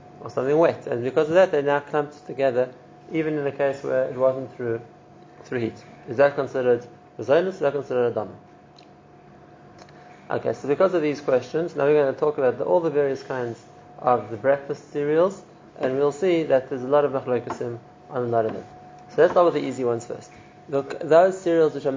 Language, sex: English, male